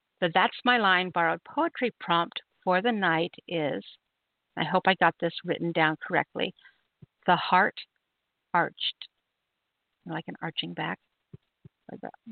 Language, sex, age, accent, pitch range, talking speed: English, female, 50-69, American, 165-225 Hz, 135 wpm